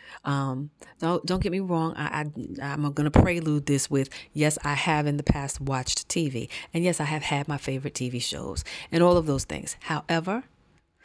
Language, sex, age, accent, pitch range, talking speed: English, female, 30-49, American, 145-195 Hz, 200 wpm